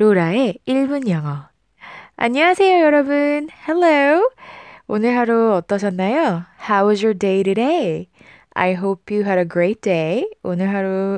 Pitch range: 175-260 Hz